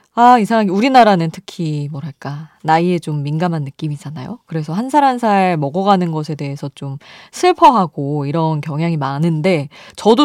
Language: Korean